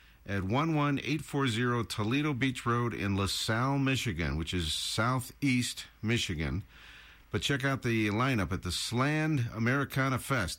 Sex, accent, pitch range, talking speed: male, American, 95-140 Hz, 125 wpm